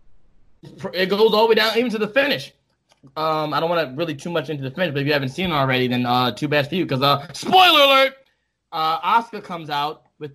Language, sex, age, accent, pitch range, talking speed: English, male, 20-39, American, 135-180 Hz, 250 wpm